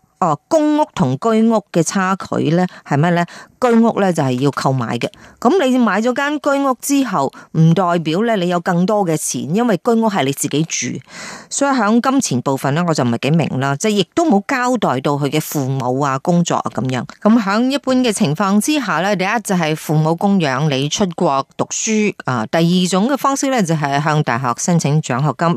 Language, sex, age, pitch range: Chinese, female, 30-49, 150-215 Hz